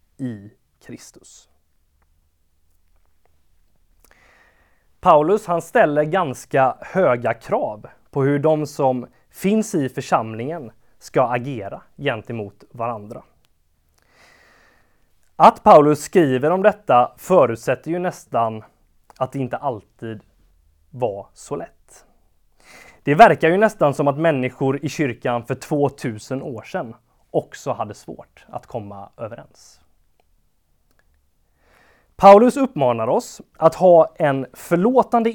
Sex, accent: male, native